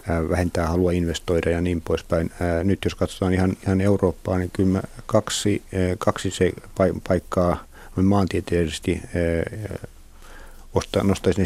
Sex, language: male, Finnish